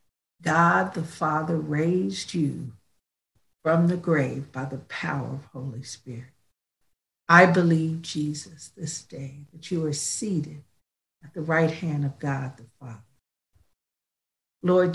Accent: American